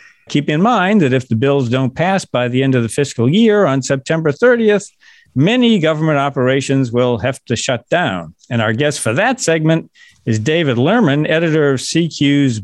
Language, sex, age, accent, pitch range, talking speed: English, male, 50-69, American, 130-185 Hz, 185 wpm